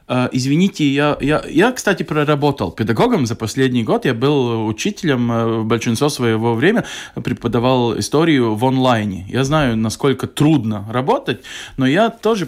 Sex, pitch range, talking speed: male, 120-165 Hz, 135 wpm